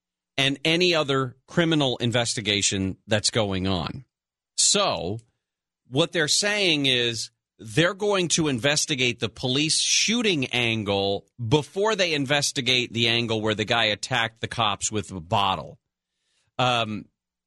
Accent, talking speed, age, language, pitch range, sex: American, 125 wpm, 40-59, English, 100-130 Hz, male